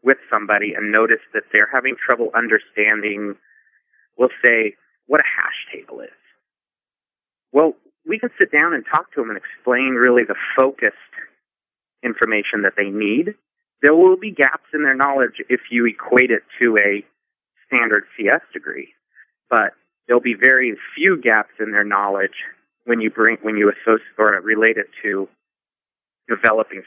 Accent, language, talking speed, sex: American, English, 155 wpm, male